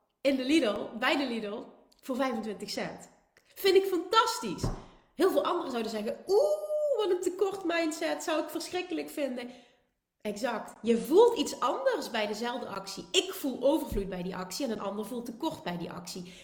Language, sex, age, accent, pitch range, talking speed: Dutch, female, 30-49, Dutch, 215-300 Hz, 175 wpm